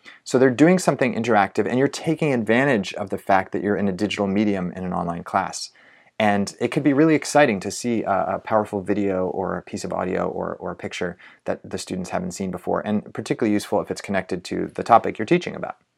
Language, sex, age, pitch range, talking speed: English, male, 30-49, 100-125 Hz, 230 wpm